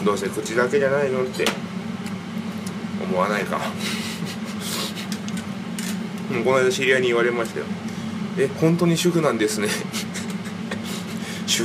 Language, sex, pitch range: Japanese, male, 195-210 Hz